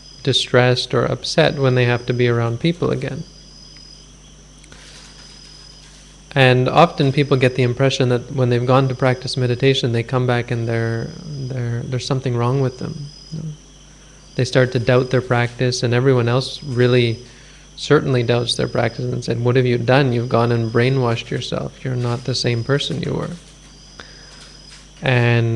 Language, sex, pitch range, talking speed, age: English, male, 125-150 Hz, 155 wpm, 20-39